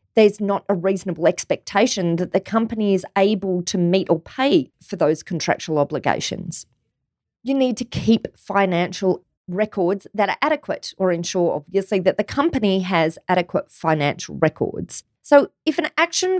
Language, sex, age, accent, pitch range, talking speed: English, female, 30-49, Australian, 180-235 Hz, 150 wpm